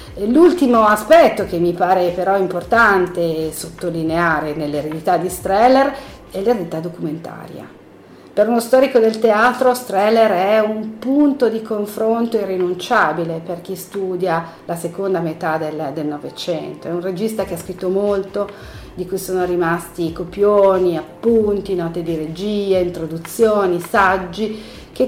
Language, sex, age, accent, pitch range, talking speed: Italian, female, 50-69, native, 170-230 Hz, 130 wpm